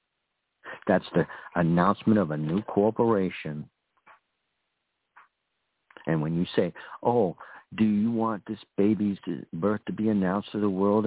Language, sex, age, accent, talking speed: English, male, 60-79, American, 130 wpm